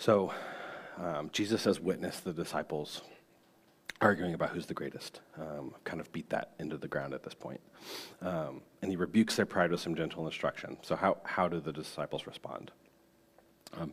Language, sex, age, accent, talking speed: English, male, 40-59, American, 175 wpm